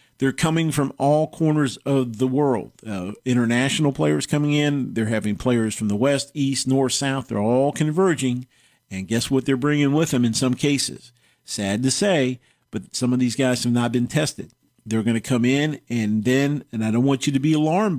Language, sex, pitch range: English, male, 115-140 Hz